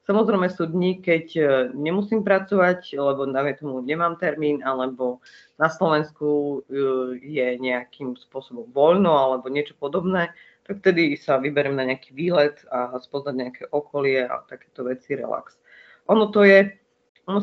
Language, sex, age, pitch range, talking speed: Slovak, female, 30-49, 145-175 Hz, 140 wpm